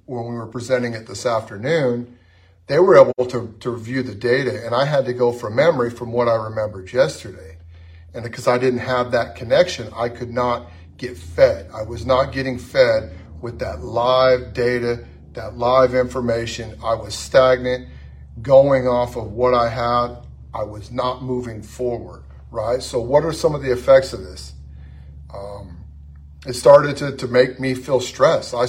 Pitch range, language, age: 110-130 Hz, English, 40-59